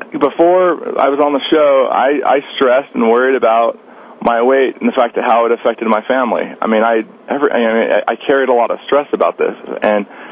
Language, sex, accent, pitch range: English, male, American, 110-135 Hz